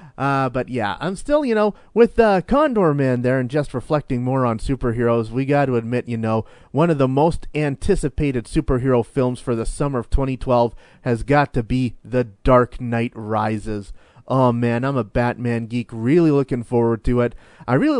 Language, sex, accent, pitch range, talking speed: English, male, American, 120-160 Hz, 195 wpm